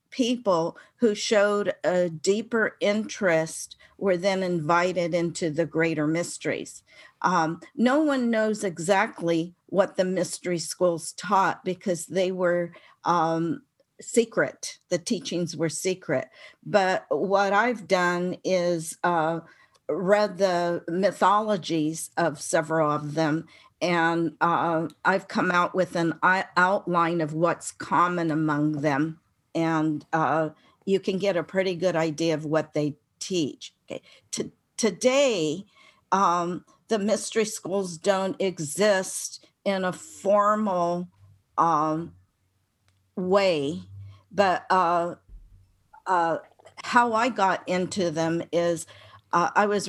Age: 50-69